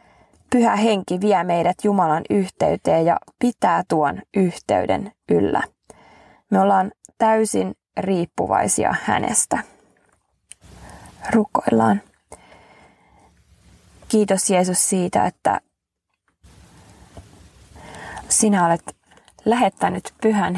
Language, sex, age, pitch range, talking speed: Finnish, female, 20-39, 175-210 Hz, 75 wpm